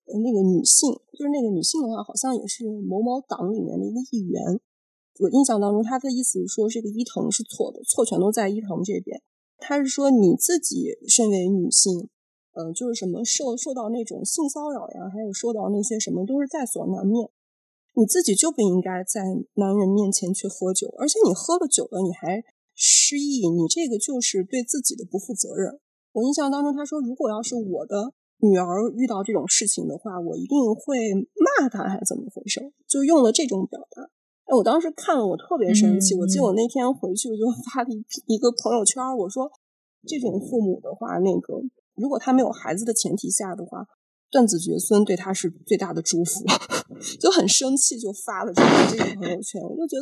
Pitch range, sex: 200-270 Hz, female